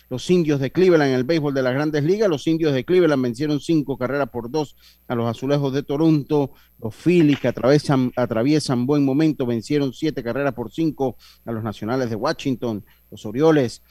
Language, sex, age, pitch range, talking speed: Spanish, male, 40-59, 120-150 Hz, 190 wpm